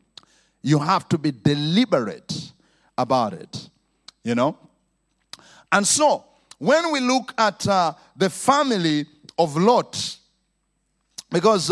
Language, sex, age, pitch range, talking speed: English, male, 50-69, 150-245 Hz, 110 wpm